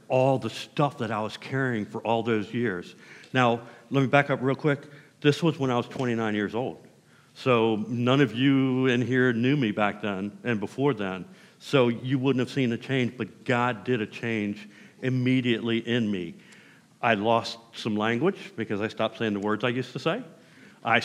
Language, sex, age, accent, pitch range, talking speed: English, male, 50-69, American, 110-135 Hz, 195 wpm